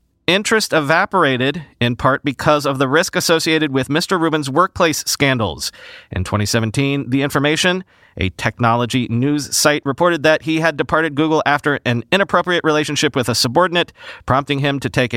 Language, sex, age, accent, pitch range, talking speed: English, male, 40-59, American, 130-165 Hz, 155 wpm